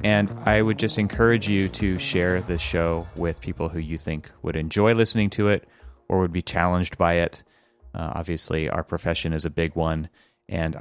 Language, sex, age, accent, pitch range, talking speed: English, male, 30-49, American, 80-100 Hz, 195 wpm